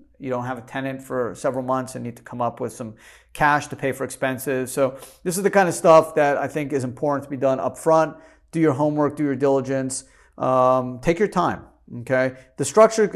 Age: 40-59